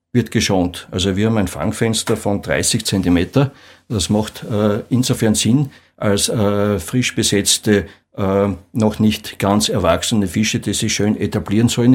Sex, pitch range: male, 95-115 Hz